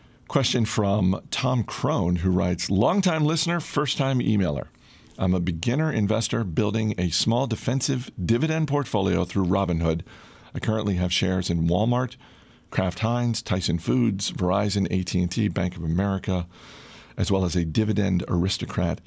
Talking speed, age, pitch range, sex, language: 135 wpm, 40-59, 90-115 Hz, male, English